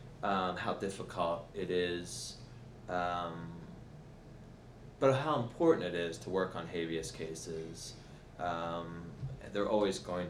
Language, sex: English, male